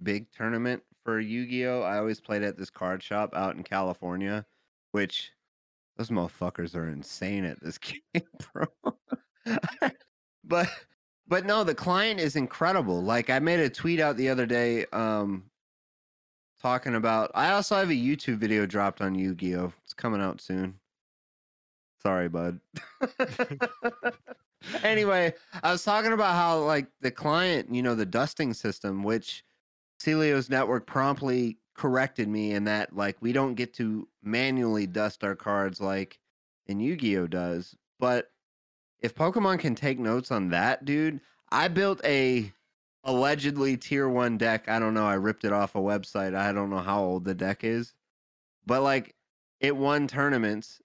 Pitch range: 100-140 Hz